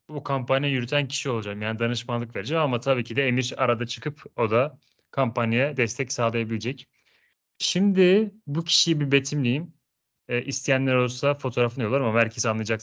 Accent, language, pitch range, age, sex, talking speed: native, Turkish, 115-145 Hz, 30-49, male, 155 wpm